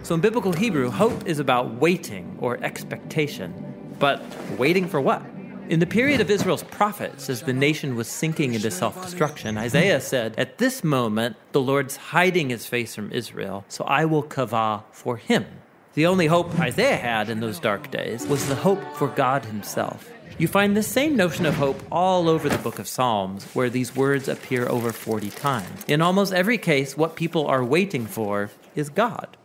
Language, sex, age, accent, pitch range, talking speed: English, male, 40-59, American, 125-180 Hz, 185 wpm